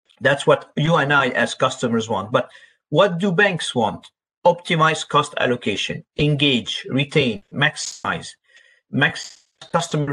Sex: male